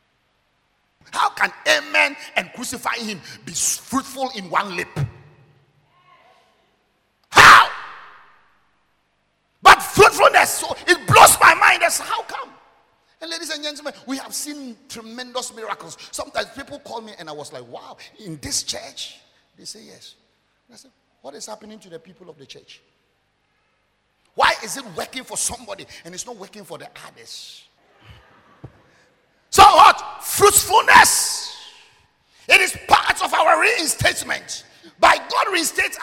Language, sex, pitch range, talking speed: English, male, 225-335 Hz, 135 wpm